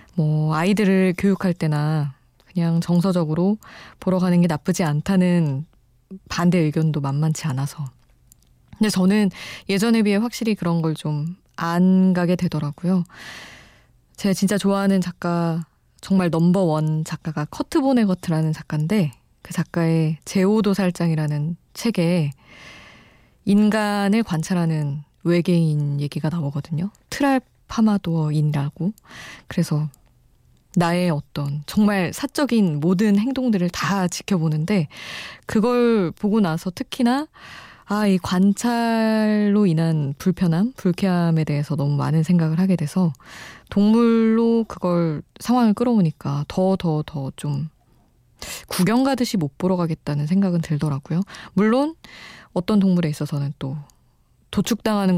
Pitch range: 155-200 Hz